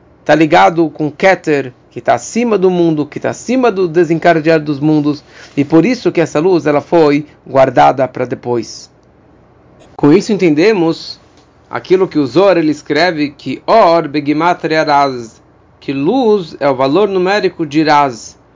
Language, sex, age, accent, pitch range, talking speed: Portuguese, male, 40-59, Brazilian, 150-175 Hz, 155 wpm